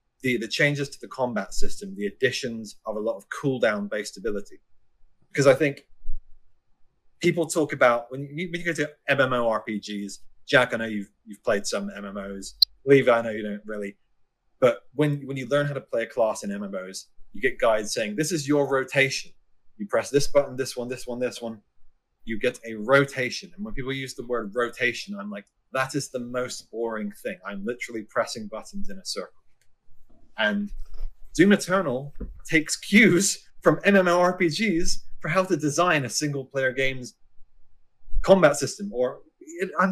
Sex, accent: male, British